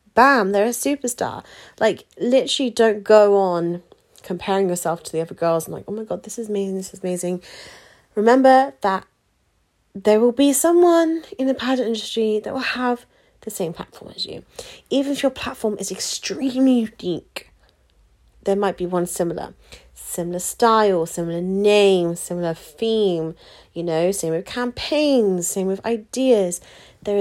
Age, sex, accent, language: 30-49, female, British, English